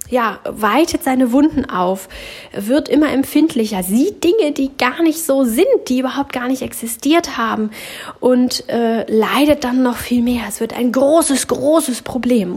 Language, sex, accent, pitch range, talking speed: German, female, German, 205-260 Hz, 160 wpm